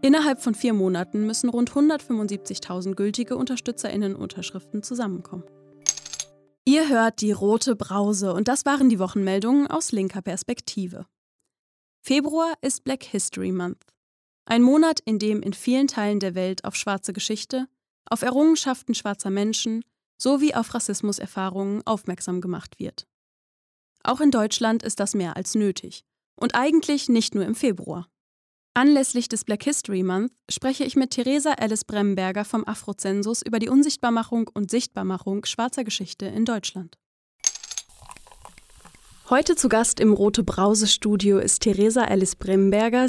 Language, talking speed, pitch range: German, 135 wpm, 195-245 Hz